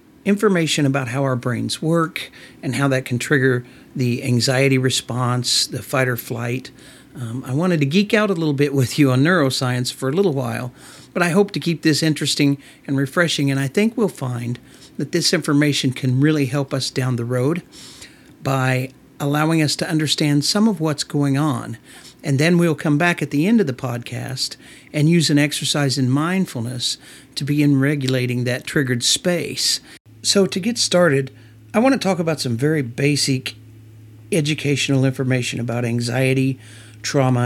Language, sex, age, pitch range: English, male, 50-69, 125-155 Hz